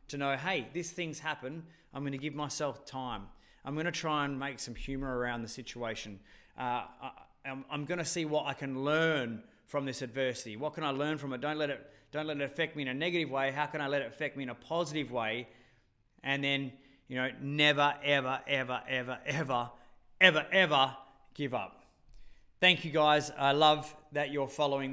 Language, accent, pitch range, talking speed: English, Australian, 130-155 Hz, 210 wpm